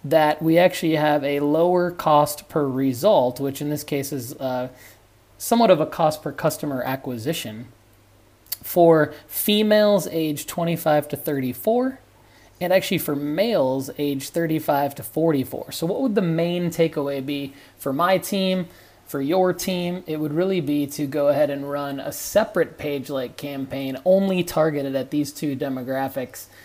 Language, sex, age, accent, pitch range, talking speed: English, male, 20-39, American, 135-165 Hz, 155 wpm